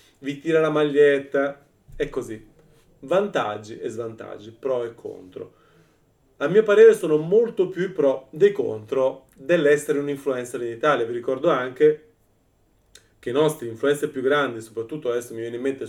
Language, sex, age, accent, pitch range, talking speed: Italian, male, 30-49, native, 120-150 Hz, 160 wpm